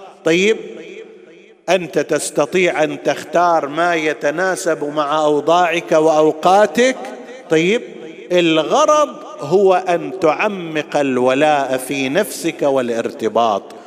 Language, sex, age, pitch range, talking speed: Arabic, male, 50-69, 140-180 Hz, 80 wpm